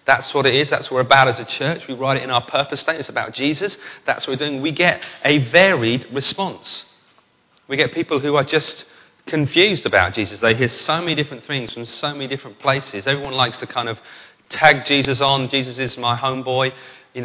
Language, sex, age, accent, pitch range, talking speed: English, male, 40-59, British, 115-145 Hz, 220 wpm